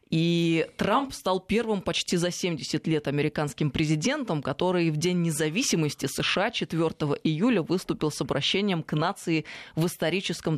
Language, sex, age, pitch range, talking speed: Russian, female, 20-39, 145-170 Hz, 135 wpm